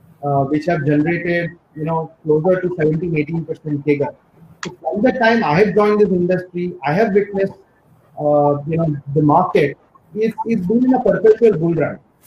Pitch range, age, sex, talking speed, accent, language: 155-210 Hz, 30-49, male, 175 wpm, Indian, English